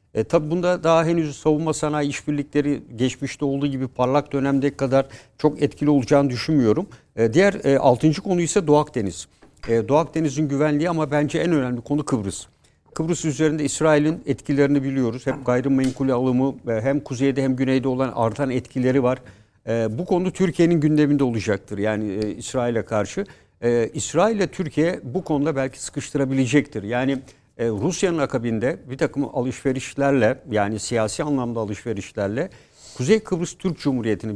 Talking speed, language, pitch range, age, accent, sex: 145 wpm, Turkish, 120-150 Hz, 60-79, native, male